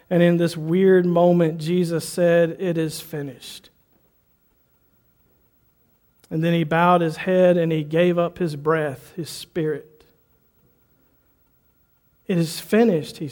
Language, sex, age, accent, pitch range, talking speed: English, male, 50-69, American, 215-290 Hz, 125 wpm